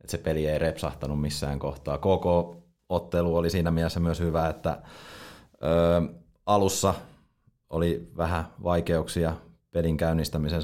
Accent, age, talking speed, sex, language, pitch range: native, 30-49, 125 wpm, male, Finnish, 75-85 Hz